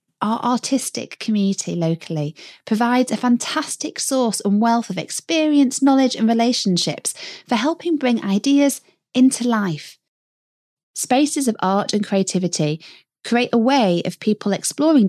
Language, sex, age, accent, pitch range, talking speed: English, female, 30-49, British, 155-255 Hz, 125 wpm